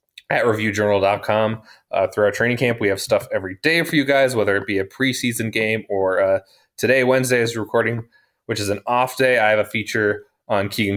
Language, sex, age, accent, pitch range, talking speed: English, male, 20-39, American, 105-130 Hz, 200 wpm